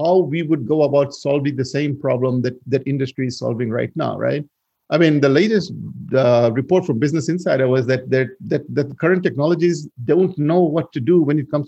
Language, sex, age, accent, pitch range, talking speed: English, male, 50-69, Indian, 130-165 Hz, 215 wpm